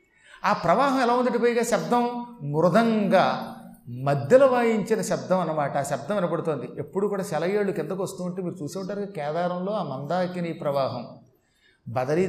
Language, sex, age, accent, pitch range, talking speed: Telugu, male, 30-49, native, 160-215 Hz, 130 wpm